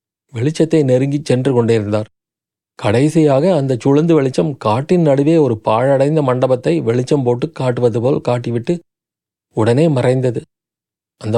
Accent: native